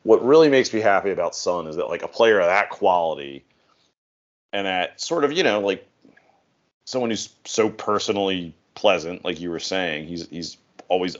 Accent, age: American, 30-49